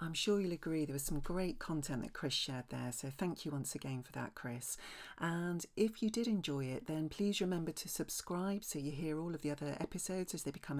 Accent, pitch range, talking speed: British, 140-180 Hz, 240 wpm